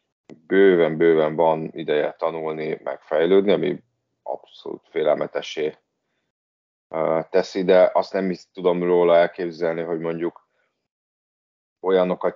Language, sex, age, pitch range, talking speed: Hungarian, male, 30-49, 80-95 Hz, 90 wpm